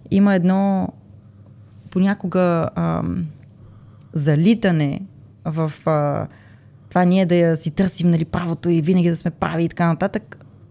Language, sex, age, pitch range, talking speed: Bulgarian, female, 20-39, 140-180 Hz, 130 wpm